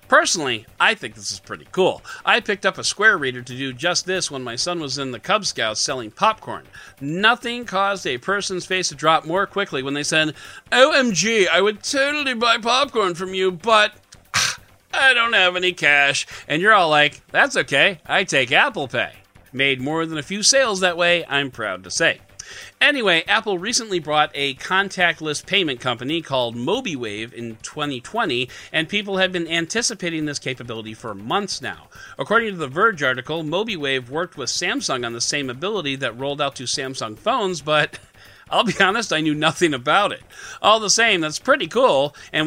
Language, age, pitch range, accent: English, 40-59, 130-195 Hz, American